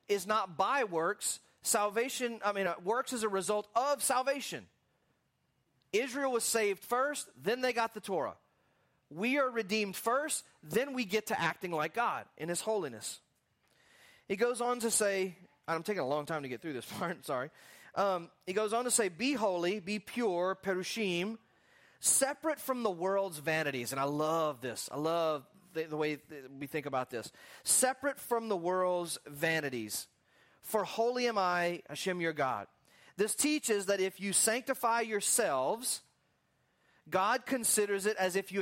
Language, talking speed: English, 165 wpm